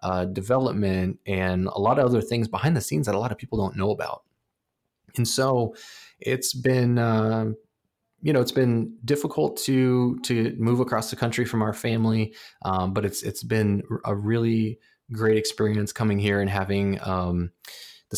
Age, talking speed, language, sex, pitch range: 20-39, 180 wpm, English, male, 95-110 Hz